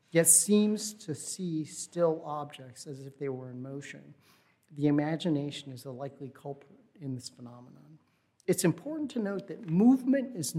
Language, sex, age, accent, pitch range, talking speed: English, male, 40-59, American, 140-165 Hz, 160 wpm